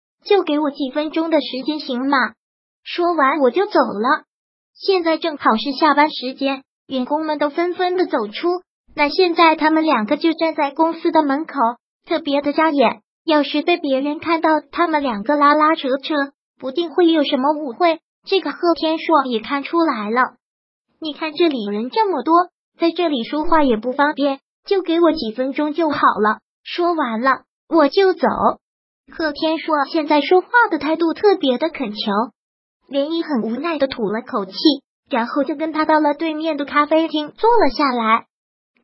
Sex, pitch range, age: male, 275-330 Hz, 20-39